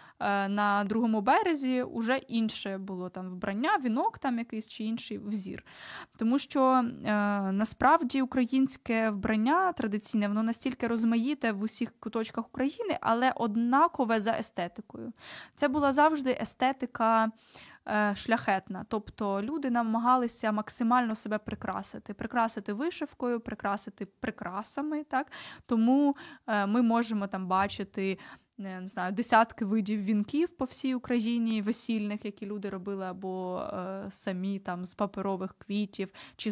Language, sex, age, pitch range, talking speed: Ukrainian, female, 20-39, 200-245 Hz, 115 wpm